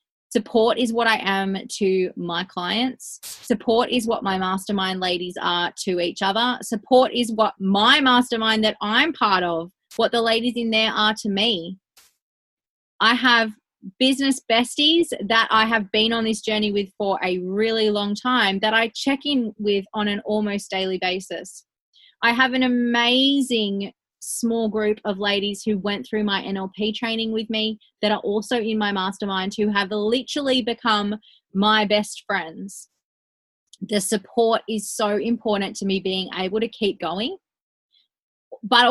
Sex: female